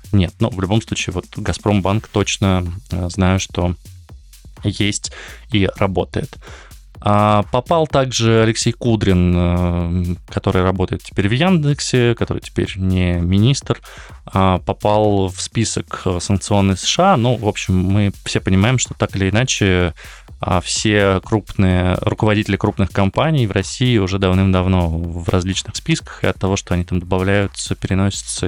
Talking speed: 135 wpm